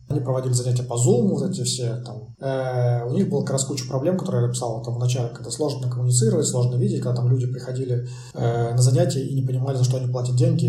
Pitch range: 125-130 Hz